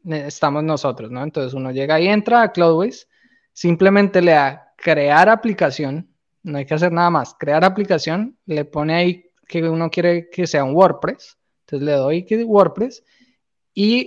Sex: male